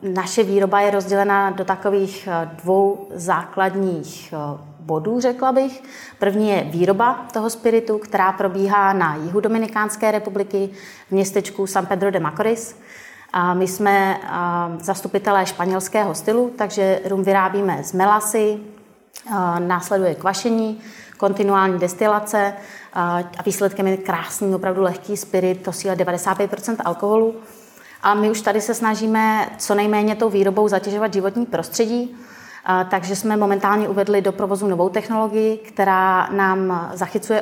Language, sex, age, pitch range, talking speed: Czech, female, 30-49, 190-215 Hz, 125 wpm